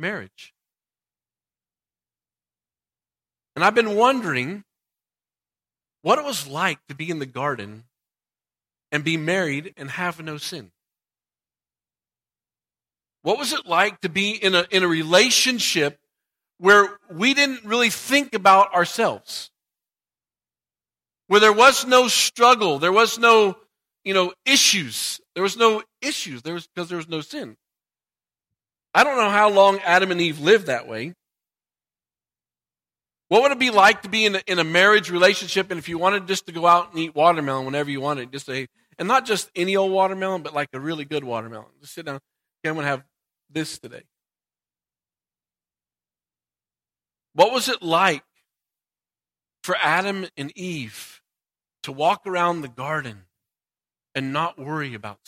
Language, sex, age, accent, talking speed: English, male, 40-59, American, 155 wpm